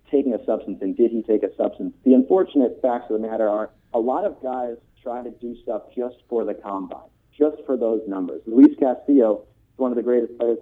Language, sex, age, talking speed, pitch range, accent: English, male, 40-59, 220 wpm, 105-125 Hz, American